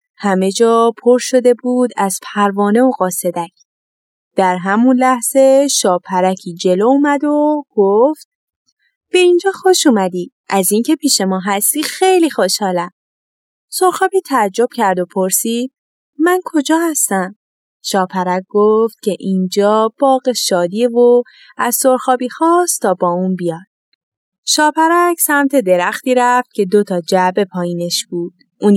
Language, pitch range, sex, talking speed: Persian, 185-265 Hz, female, 125 wpm